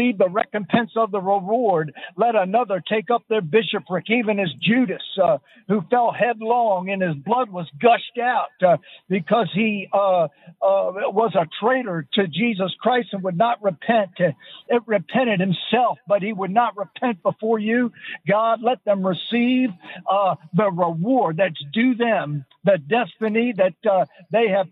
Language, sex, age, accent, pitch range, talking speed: English, male, 50-69, American, 185-235 Hz, 160 wpm